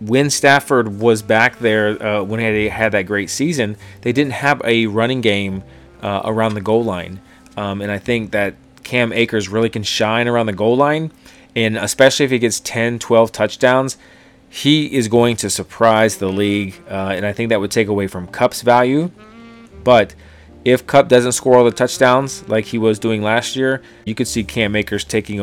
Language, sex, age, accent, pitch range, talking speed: English, male, 30-49, American, 100-120 Hz, 200 wpm